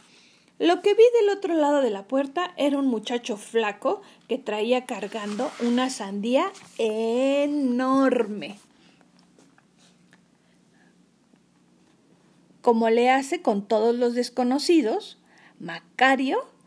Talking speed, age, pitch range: 95 wpm, 40-59, 220-295 Hz